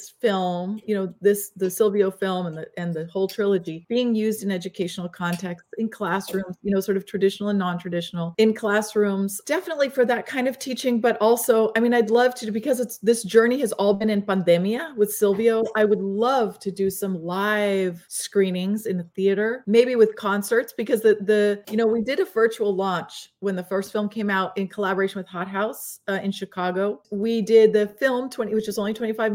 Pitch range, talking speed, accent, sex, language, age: 190-220 Hz, 205 wpm, American, female, English, 30-49